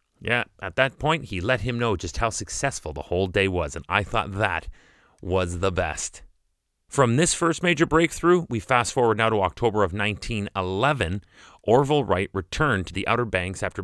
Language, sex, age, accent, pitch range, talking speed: English, male, 30-49, American, 95-135 Hz, 185 wpm